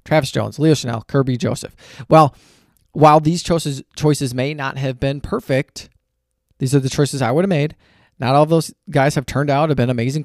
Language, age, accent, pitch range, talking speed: English, 20-39, American, 125-155 Hz, 210 wpm